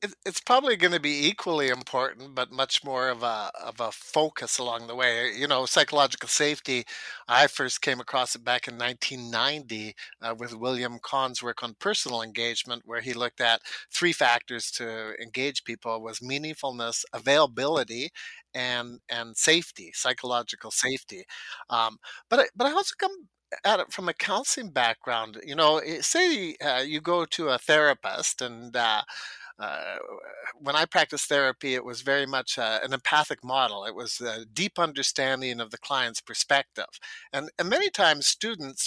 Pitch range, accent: 120-165 Hz, American